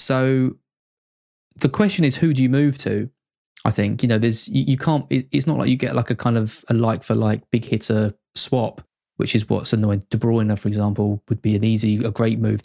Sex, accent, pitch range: male, British, 110-130 Hz